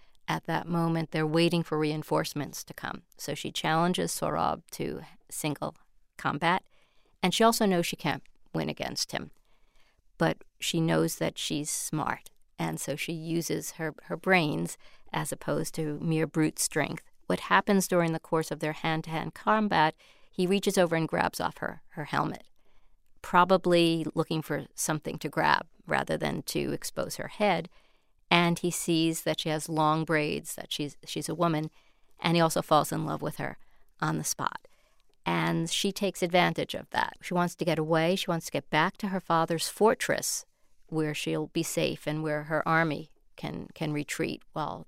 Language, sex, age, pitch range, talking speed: English, female, 50-69, 155-175 Hz, 175 wpm